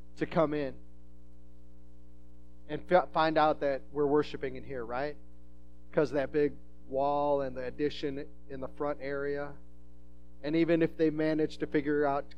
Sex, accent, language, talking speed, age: male, American, English, 155 wpm, 30-49